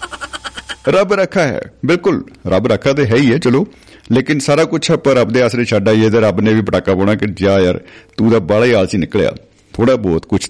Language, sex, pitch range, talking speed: Punjabi, male, 100-130 Hz, 225 wpm